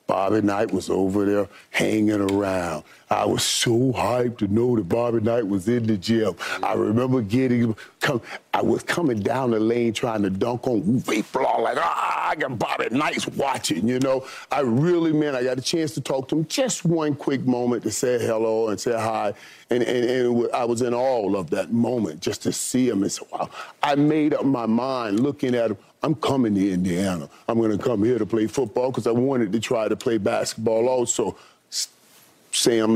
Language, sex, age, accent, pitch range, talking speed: English, male, 40-59, American, 105-125 Hz, 205 wpm